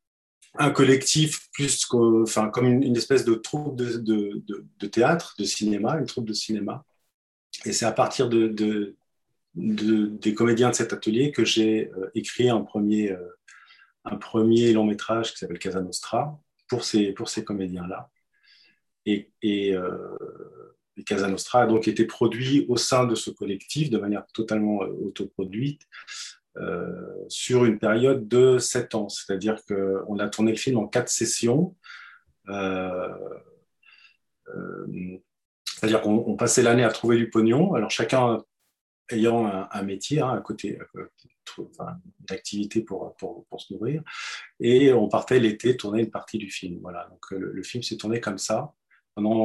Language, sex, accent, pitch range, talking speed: French, male, French, 100-125 Hz, 170 wpm